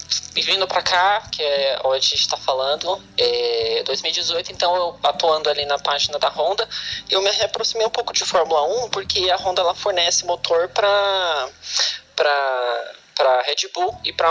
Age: 20-39